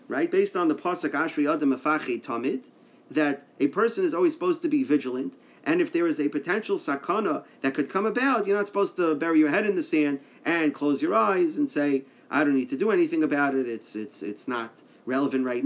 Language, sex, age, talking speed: English, male, 40-59, 220 wpm